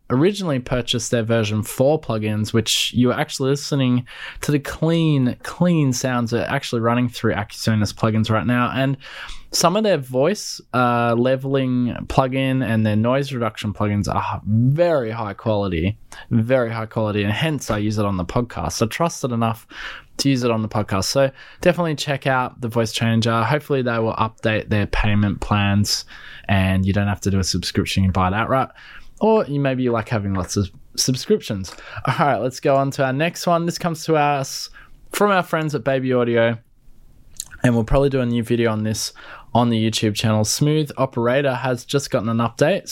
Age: 20-39